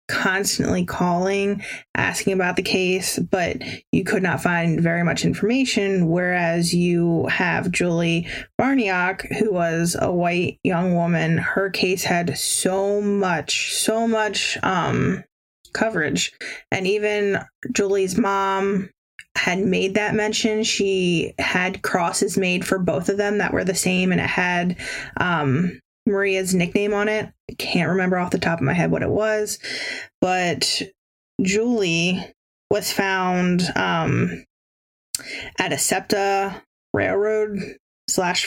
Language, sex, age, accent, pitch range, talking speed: English, female, 20-39, American, 175-205 Hz, 130 wpm